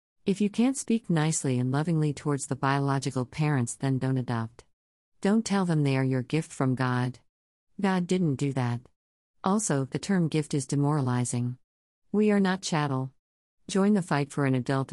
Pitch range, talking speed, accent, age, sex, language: 130-160 Hz, 175 wpm, American, 50-69, female, English